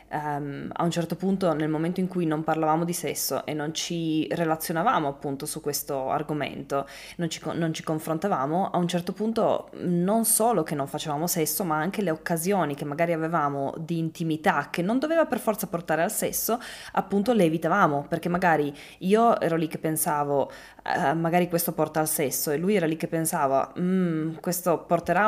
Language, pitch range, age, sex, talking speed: Italian, 155-180 Hz, 20-39, female, 180 wpm